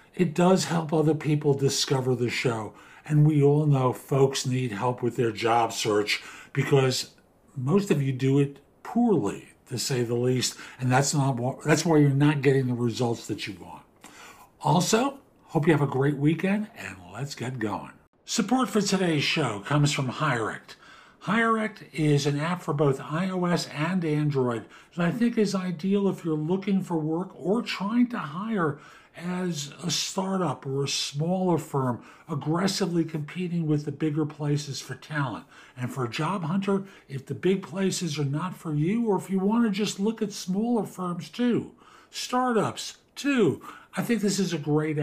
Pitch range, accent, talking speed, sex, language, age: 135-185 Hz, American, 175 wpm, male, English, 60-79